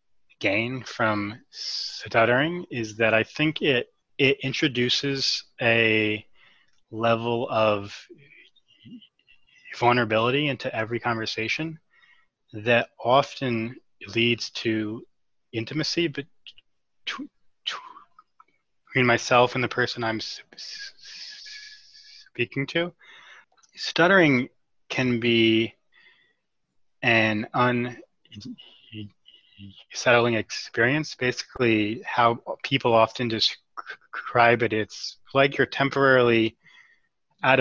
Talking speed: 80 wpm